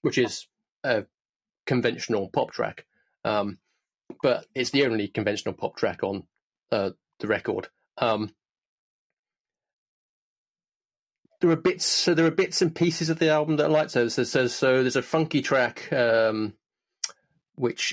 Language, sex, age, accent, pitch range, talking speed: English, male, 30-49, British, 110-145 Hz, 145 wpm